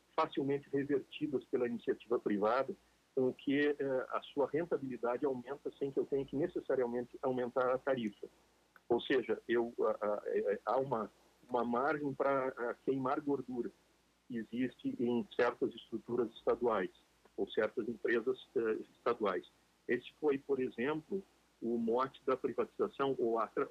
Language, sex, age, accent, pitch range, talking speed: Portuguese, male, 50-69, Brazilian, 120-150 Hz, 140 wpm